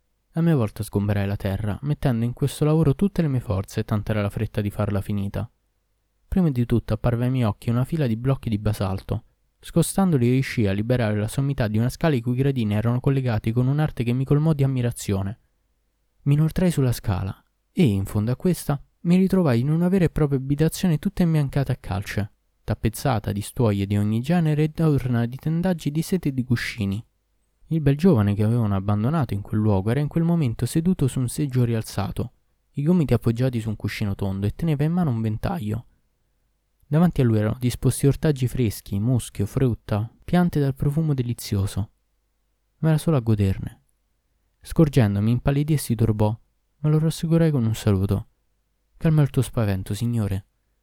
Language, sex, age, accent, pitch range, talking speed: Italian, male, 20-39, native, 105-150 Hz, 180 wpm